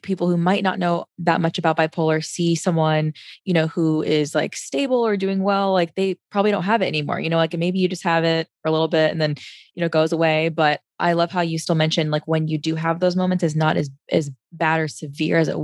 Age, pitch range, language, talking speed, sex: 20-39, 155-170 Hz, English, 265 wpm, female